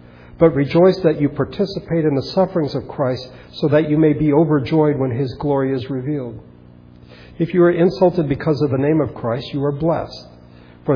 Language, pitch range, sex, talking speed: English, 110-150 Hz, male, 190 wpm